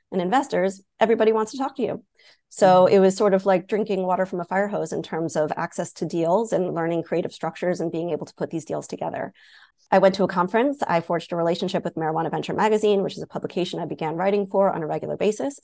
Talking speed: 240 wpm